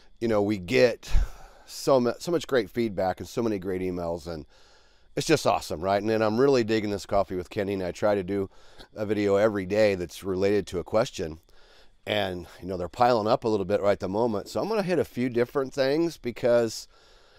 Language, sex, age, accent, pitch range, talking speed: English, male, 40-59, American, 95-120 Hz, 225 wpm